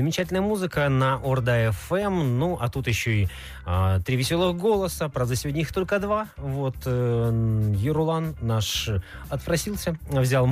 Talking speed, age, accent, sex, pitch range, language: 135 wpm, 20-39, native, male, 110-150 Hz, Russian